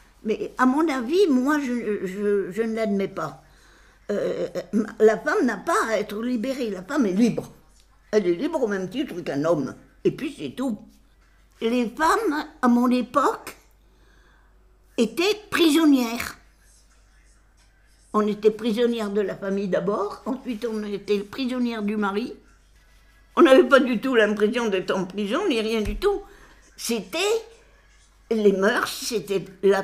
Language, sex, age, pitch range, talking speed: French, female, 60-79, 205-285 Hz, 145 wpm